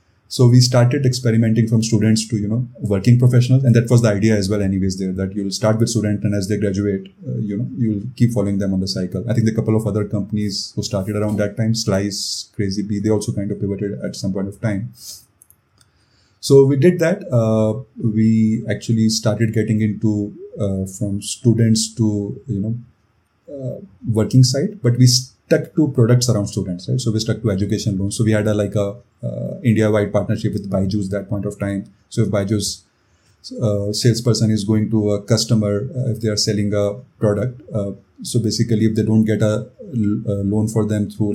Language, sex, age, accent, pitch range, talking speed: English, male, 30-49, Indian, 100-115 Hz, 210 wpm